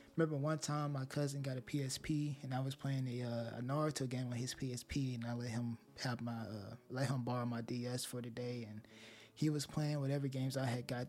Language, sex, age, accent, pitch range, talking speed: English, male, 20-39, American, 115-140 Hz, 240 wpm